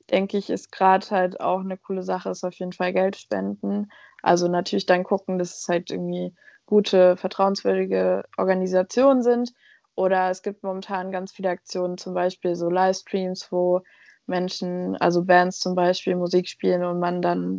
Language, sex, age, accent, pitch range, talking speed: German, female, 20-39, German, 175-190 Hz, 165 wpm